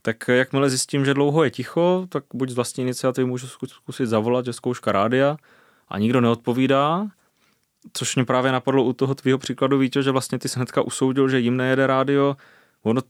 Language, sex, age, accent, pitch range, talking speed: Czech, male, 20-39, native, 120-140 Hz, 185 wpm